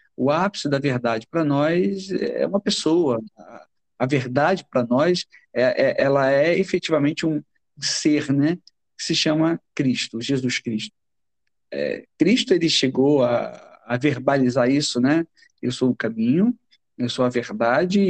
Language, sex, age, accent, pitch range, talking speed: Portuguese, male, 50-69, Brazilian, 130-180 Hz, 135 wpm